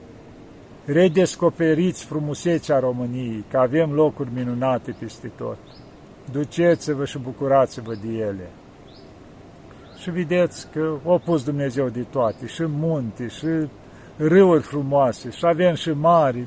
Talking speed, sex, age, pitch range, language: 110 wpm, male, 50-69, 130-165 Hz, Romanian